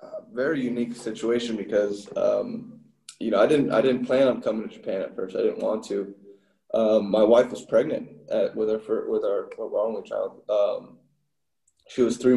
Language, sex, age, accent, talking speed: English, male, 20-39, American, 195 wpm